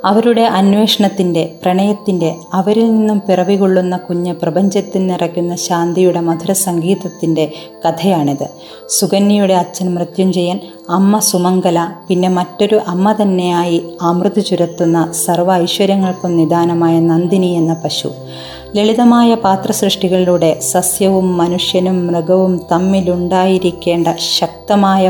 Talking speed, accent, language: 90 wpm, native, Malayalam